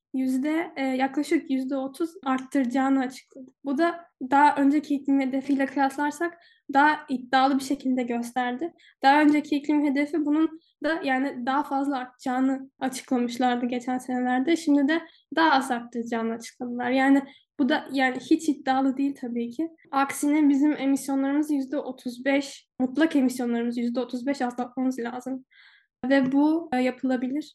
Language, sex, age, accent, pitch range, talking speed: Turkish, female, 10-29, native, 255-285 Hz, 135 wpm